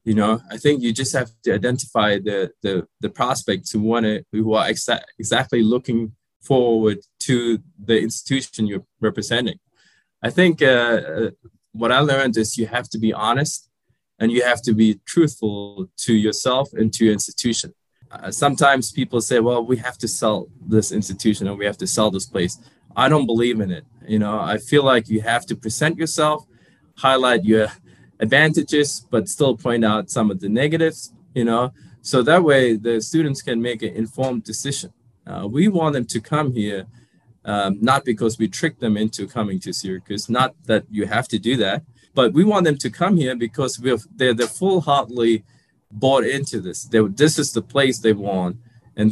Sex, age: male, 20-39